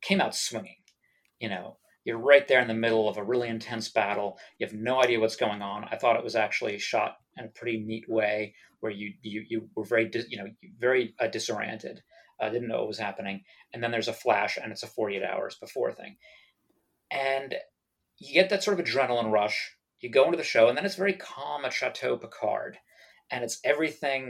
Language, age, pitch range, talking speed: English, 40-59, 110-135 Hz, 215 wpm